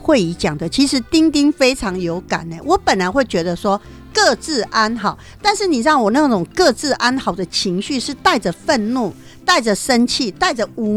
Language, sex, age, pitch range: Chinese, female, 50-69, 205-310 Hz